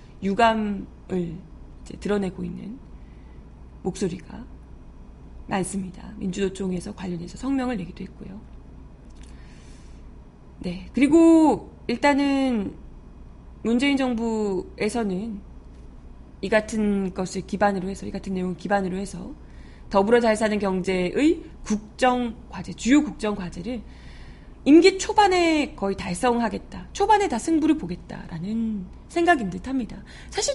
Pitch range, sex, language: 180-260 Hz, female, Korean